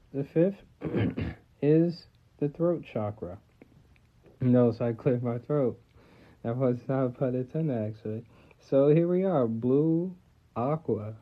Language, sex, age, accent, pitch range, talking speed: English, male, 40-59, American, 115-135 Hz, 145 wpm